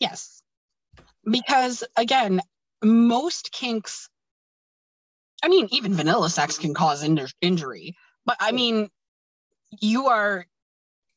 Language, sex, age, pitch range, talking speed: English, female, 20-39, 170-230 Hz, 100 wpm